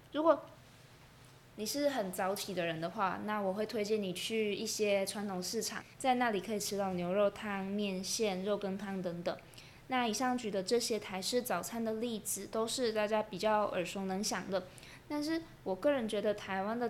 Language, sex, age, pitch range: Chinese, female, 20-39, 185-215 Hz